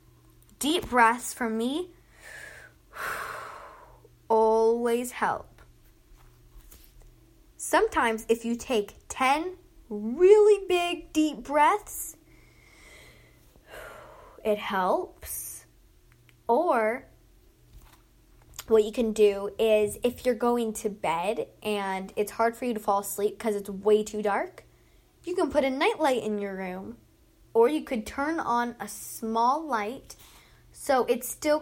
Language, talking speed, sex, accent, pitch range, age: English, 115 wpm, female, American, 215-275 Hz, 10-29